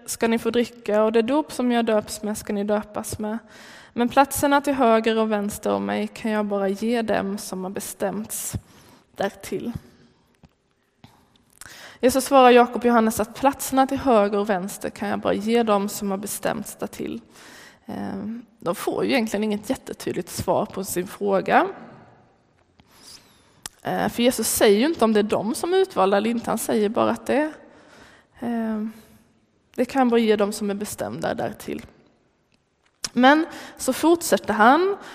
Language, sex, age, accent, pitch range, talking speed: Swedish, female, 20-39, native, 205-250 Hz, 160 wpm